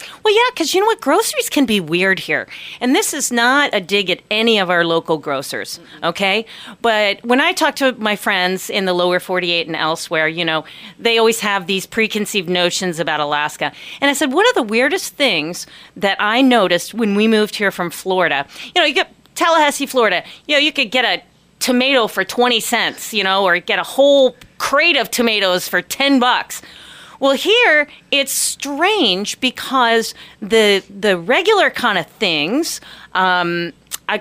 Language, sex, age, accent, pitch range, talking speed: English, female, 40-59, American, 185-285 Hz, 185 wpm